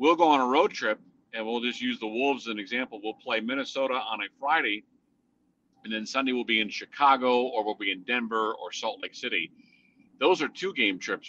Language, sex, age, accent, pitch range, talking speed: English, male, 50-69, American, 110-135 Hz, 220 wpm